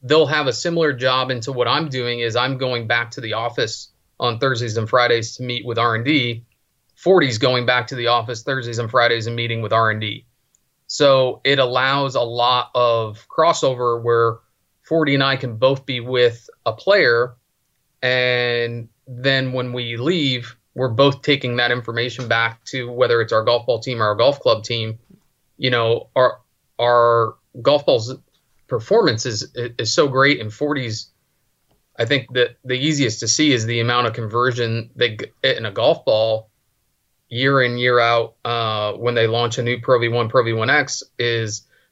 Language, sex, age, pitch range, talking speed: English, male, 30-49, 115-130 Hz, 175 wpm